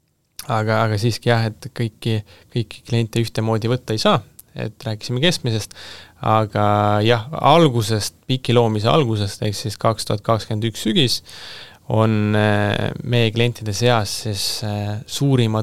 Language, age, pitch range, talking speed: English, 20-39, 105-120 Hz, 115 wpm